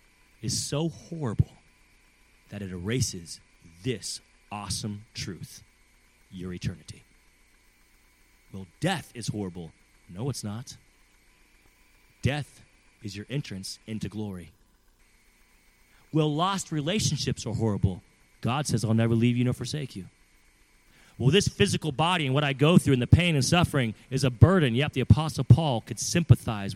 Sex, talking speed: male, 135 wpm